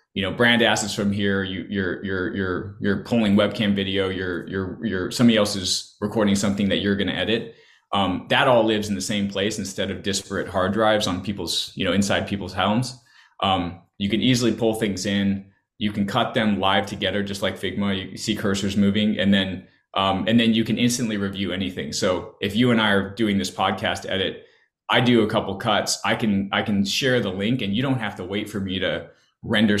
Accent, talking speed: American, 215 wpm